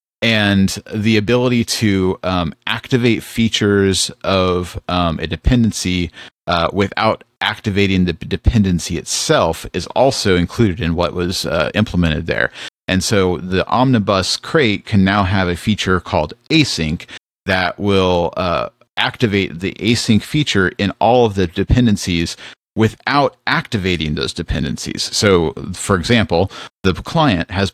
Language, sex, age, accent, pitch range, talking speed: English, male, 40-59, American, 85-110 Hz, 130 wpm